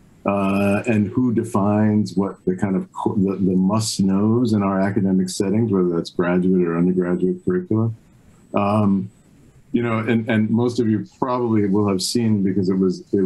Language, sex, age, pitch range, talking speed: English, male, 50-69, 90-110 Hz, 175 wpm